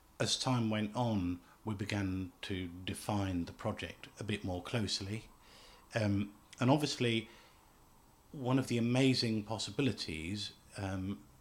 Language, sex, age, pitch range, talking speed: English, male, 50-69, 95-120 Hz, 120 wpm